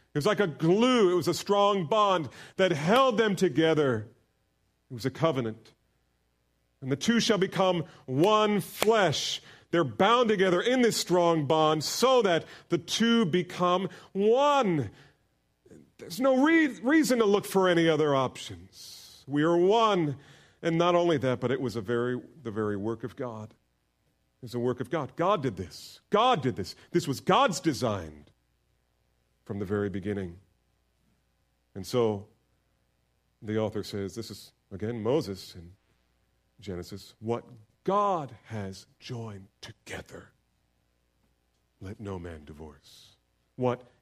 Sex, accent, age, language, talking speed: male, American, 40-59, English, 145 wpm